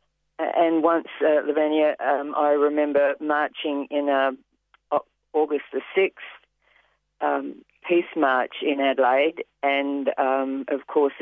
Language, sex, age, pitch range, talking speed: English, female, 40-59, 135-160 Hz, 125 wpm